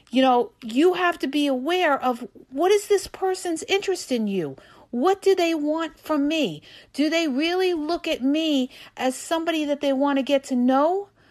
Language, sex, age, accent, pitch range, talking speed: English, female, 50-69, American, 255-315 Hz, 190 wpm